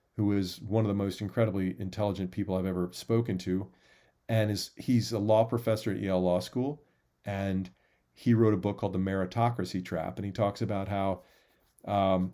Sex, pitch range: male, 90-110 Hz